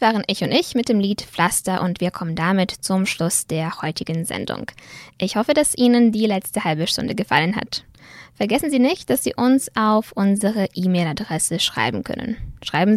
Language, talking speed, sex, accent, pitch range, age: German, 180 wpm, female, American, 175-240 Hz, 10-29